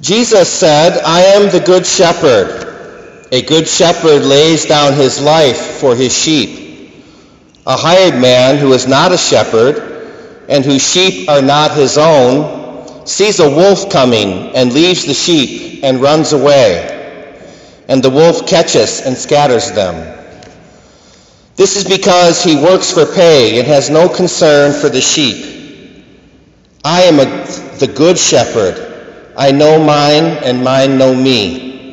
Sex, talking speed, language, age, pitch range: male, 145 wpm, English, 50-69, 135-175 Hz